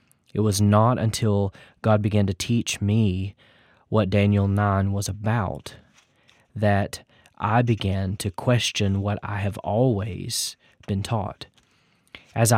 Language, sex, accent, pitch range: English, male, American, 100-120 Hz